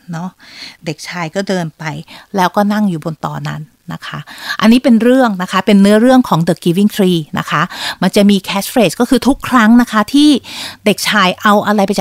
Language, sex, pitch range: Thai, female, 190-240 Hz